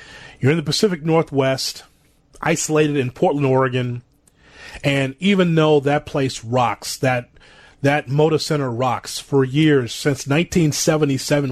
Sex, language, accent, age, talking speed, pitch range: male, English, American, 30-49, 125 wpm, 125-150 Hz